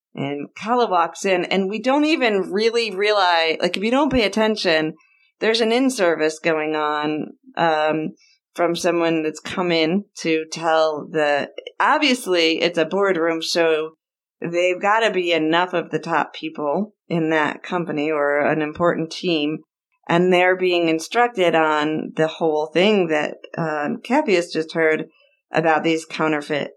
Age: 40-59